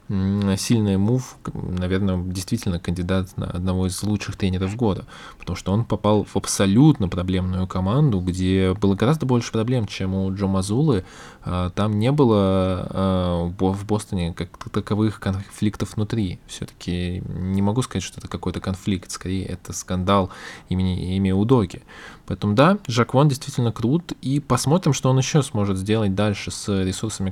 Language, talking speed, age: Russian, 145 wpm, 20-39